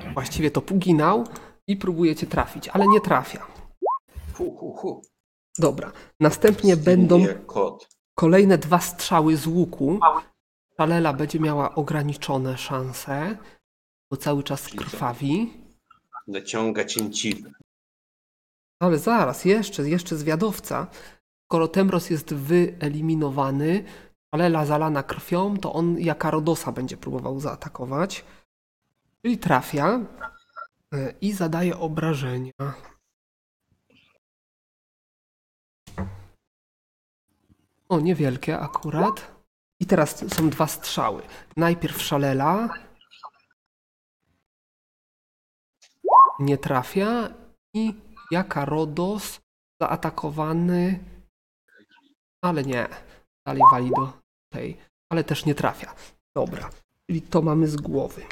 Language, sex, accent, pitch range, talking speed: Polish, male, native, 145-190 Hz, 85 wpm